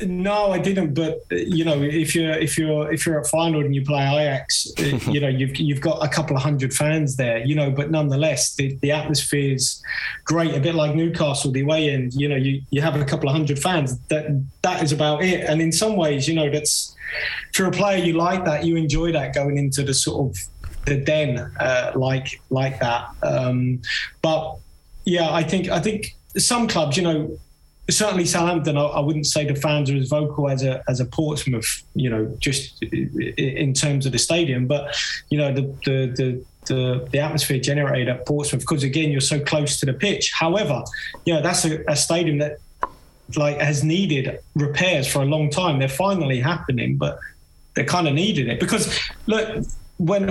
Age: 20-39